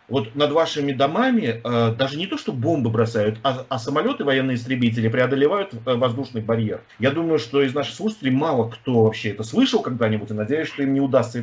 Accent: native